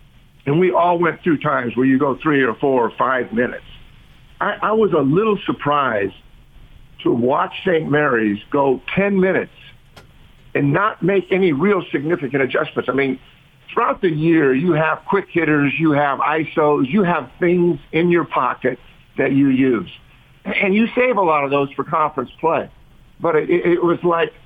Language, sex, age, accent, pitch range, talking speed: English, male, 50-69, American, 135-175 Hz, 175 wpm